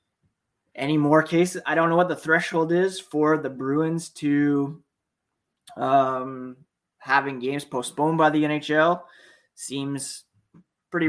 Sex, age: male, 20-39